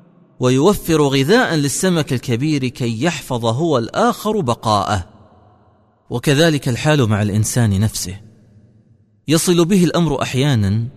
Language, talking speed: Arabic, 100 wpm